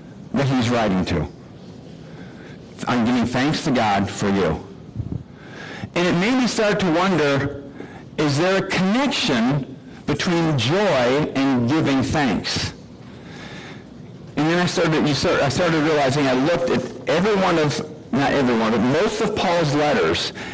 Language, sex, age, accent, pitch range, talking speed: English, male, 60-79, American, 120-165 Hz, 140 wpm